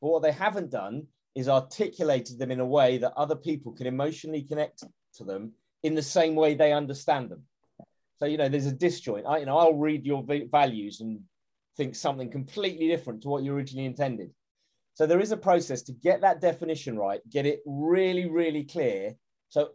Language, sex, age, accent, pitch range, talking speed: English, male, 30-49, British, 130-165 Hz, 200 wpm